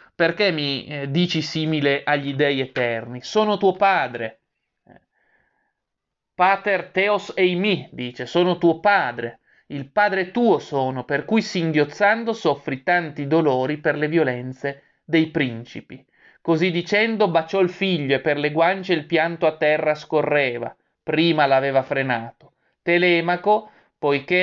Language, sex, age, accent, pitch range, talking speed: Italian, male, 30-49, native, 145-180 Hz, 130 wpm